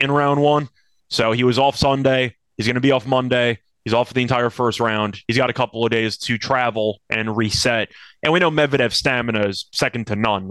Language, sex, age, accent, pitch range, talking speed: English, male, 20-39, American, 115-145 Hz, 230 wpm